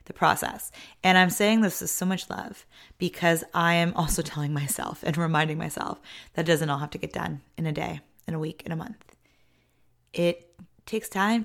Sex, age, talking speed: female, 20-39, 205 wpm